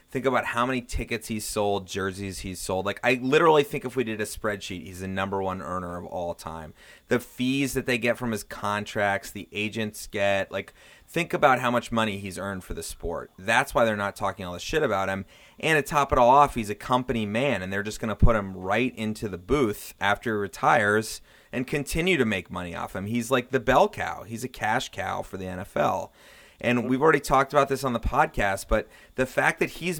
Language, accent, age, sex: English, American, 30-49, male